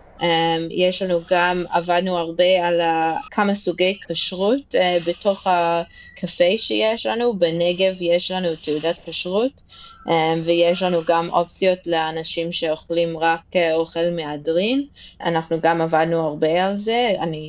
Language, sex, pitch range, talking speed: Hebrew, female, 165-190 Hz, 115 wpm